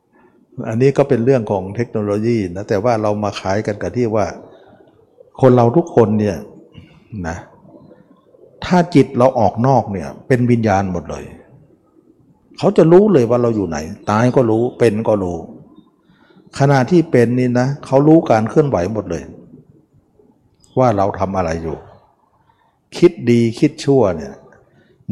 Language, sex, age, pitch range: Thai, male, 60-79, 100-135 Hz